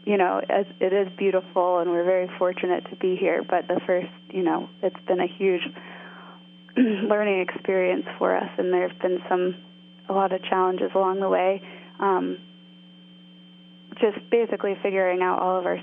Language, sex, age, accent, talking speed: English, female, 20-39, American, 170 wpm